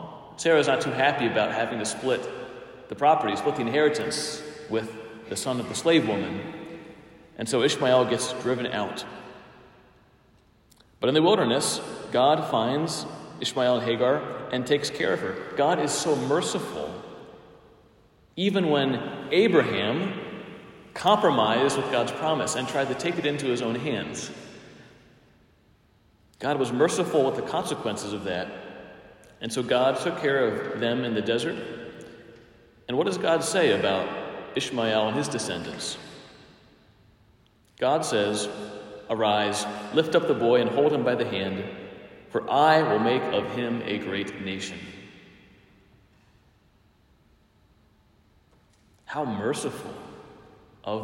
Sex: male